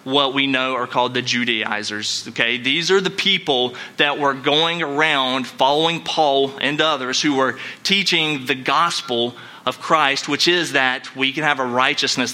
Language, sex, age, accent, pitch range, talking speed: English, male, 30-49, American, 130-160 Hz, 170 wpm